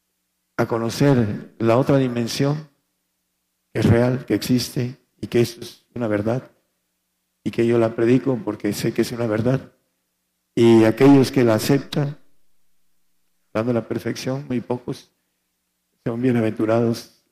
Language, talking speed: Spanish, 135 wpm